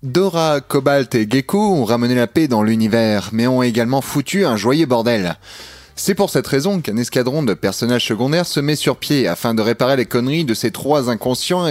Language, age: French, 30-49